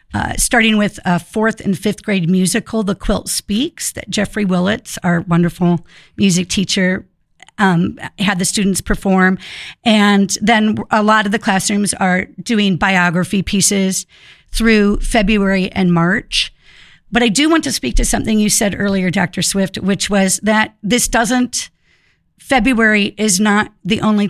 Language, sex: English, female